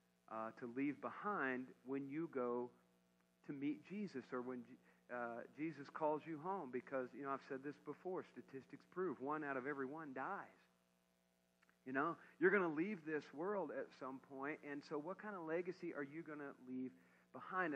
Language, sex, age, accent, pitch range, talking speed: English, male, 50-69, American, 125-150 Hz, 185 wpm